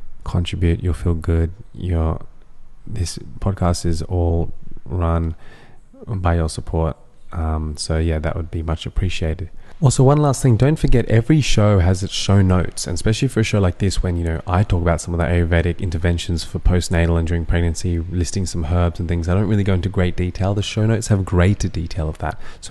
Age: 20-39